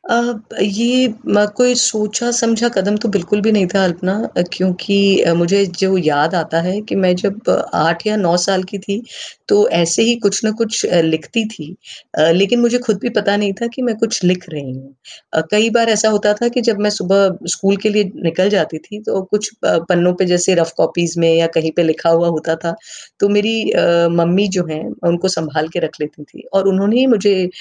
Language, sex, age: Hindi, female, 30-49